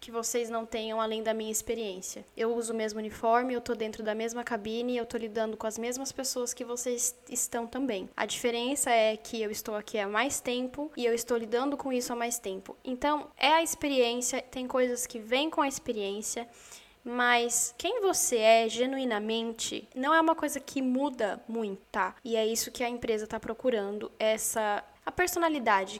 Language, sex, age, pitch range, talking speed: Portuguese, female, 10-29, 225-270 Hz, 195 wpm